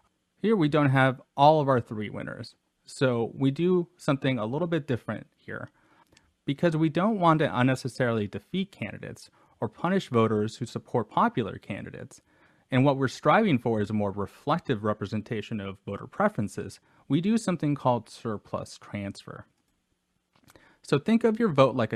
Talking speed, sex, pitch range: 160 wpm, male, 110-145 Hz